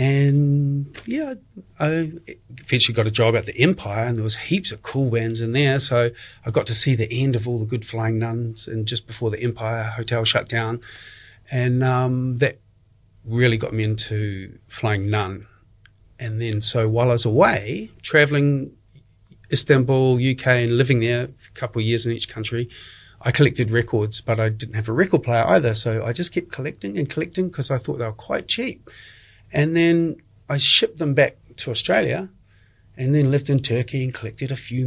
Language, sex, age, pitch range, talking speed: English, male, 30-49, 110-140 Hz, 195 wpm